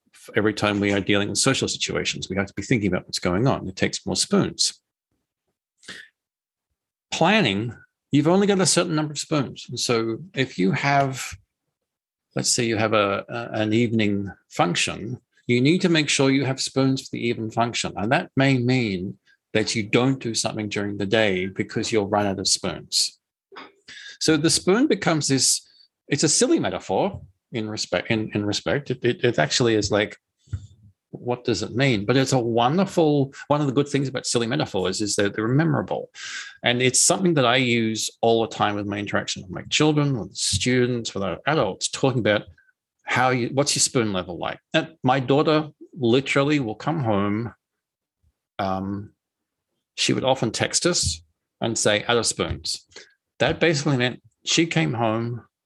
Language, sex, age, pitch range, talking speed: English, male, 40-59, 105-140 Hz, 180 wpm